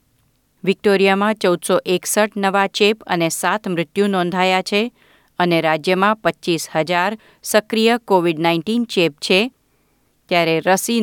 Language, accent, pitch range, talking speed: Gujarati, native, 175-215 Hz, 115 wpm